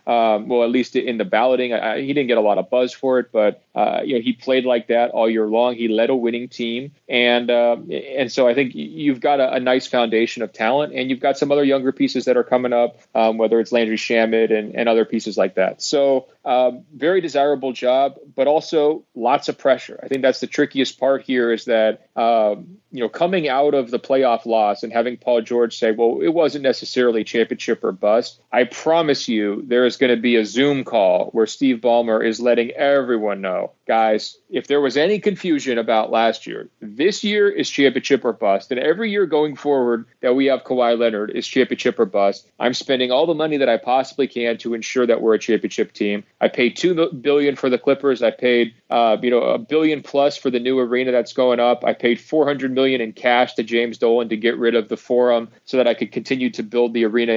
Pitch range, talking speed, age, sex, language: 115-135 Hz, 230 wpm, 30-49, male, English